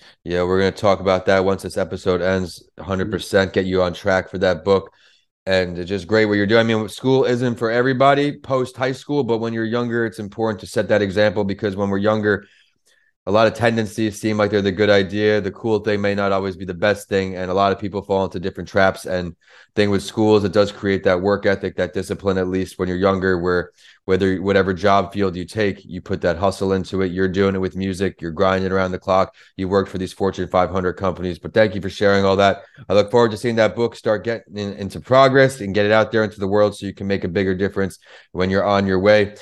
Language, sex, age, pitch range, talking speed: English, male, 30-49, 95-115 Hz, 250 wpm